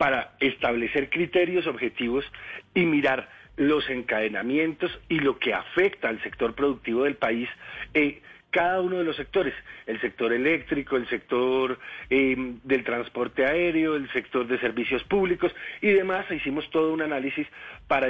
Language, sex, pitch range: Spanish, male, 130-180 Hz